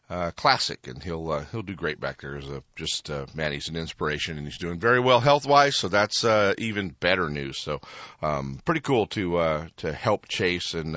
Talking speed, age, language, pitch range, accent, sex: 225 wpm, 40-59, English, 90-130 Hz, American, male